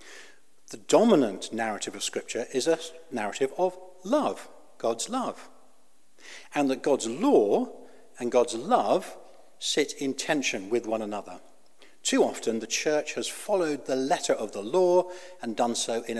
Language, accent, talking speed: English, British, 150 wpm